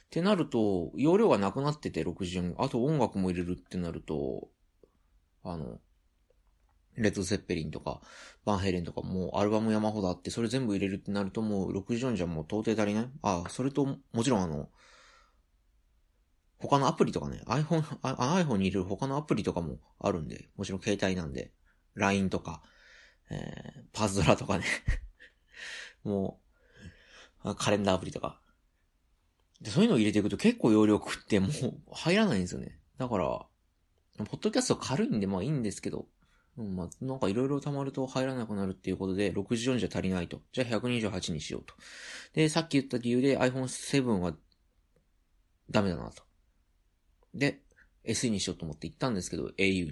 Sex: male